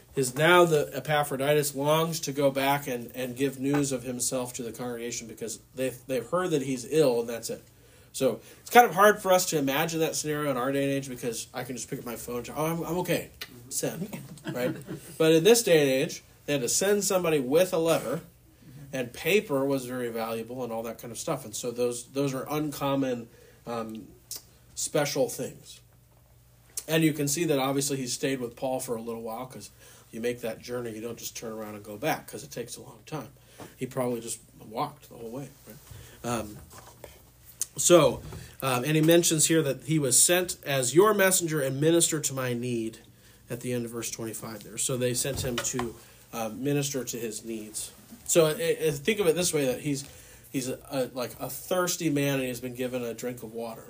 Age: 40-59